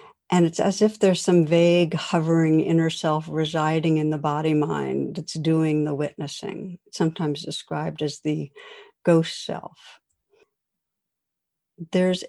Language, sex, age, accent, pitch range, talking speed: English, female, 60-79, American, 165-220 Hz, 120 wpm